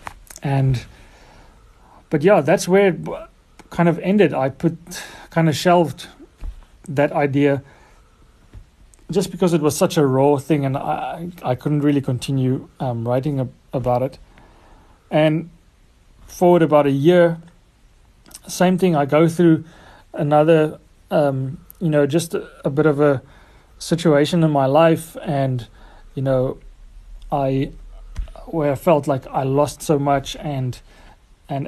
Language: English